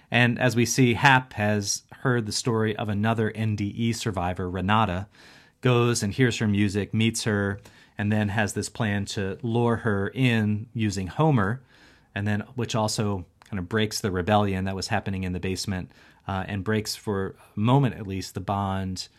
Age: 30-49